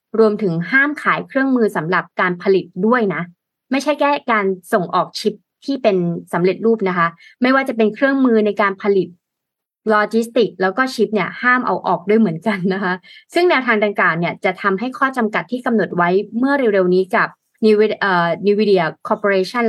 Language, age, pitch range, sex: Thai, 20-39, 185-230 Hz, female